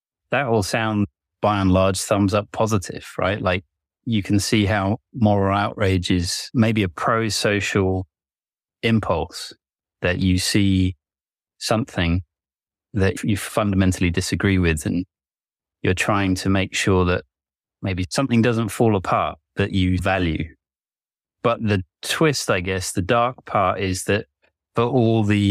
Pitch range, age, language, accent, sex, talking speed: 90-110 Hz, 30-49, English, British, male, 140 wpm